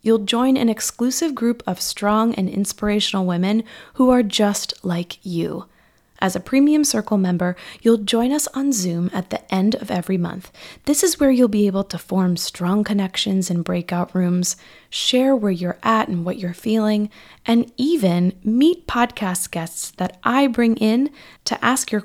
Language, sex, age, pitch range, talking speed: English, female, 20-39, 185-240 Hz, 175 wpm